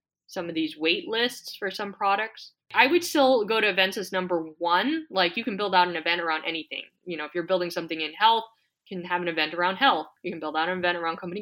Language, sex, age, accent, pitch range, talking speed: English, female, 20-39, American, 170-215 Hz, 255 wpm